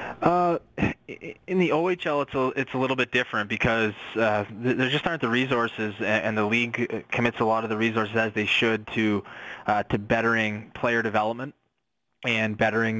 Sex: male